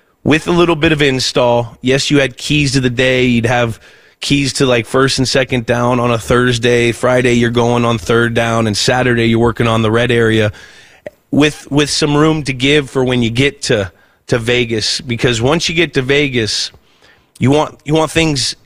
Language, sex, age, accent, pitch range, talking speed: English, male, 30-49, American, 120-145 Hz, 205 wpm